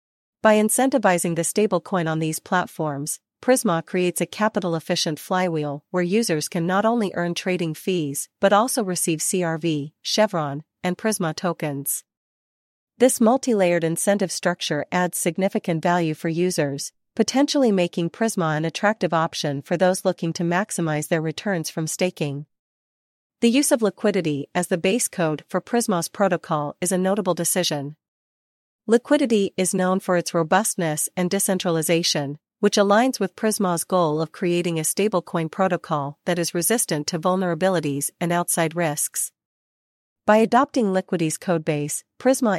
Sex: female